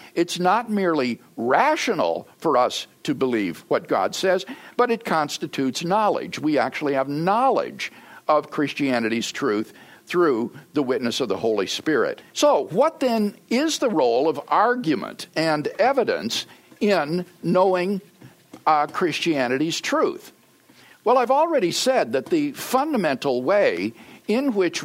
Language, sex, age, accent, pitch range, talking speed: English, male, 60-79, American, 150-240 Hz, 130 wpm